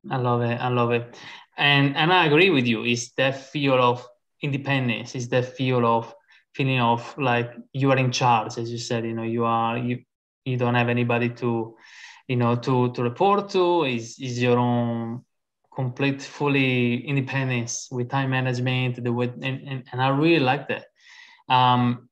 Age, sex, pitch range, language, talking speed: 20-39, male, 120-135 Hz, English, 175 wpm